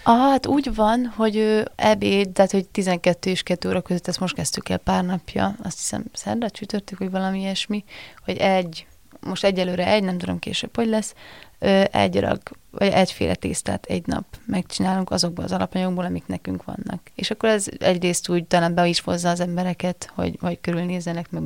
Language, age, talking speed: Hungarian, 30-49, 185 wpm